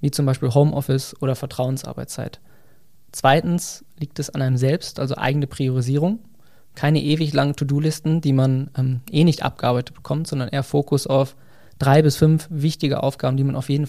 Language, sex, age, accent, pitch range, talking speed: German, male, 20-39, German, 130-145 Hz, 170 wpm